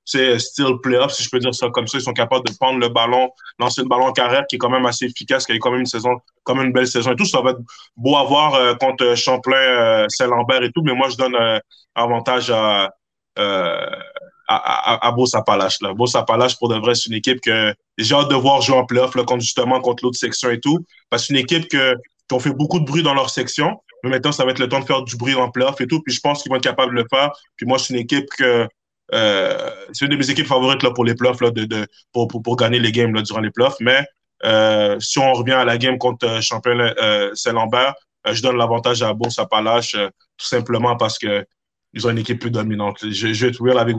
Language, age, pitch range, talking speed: French, 20-39, 115-135 Hz, 270 wpm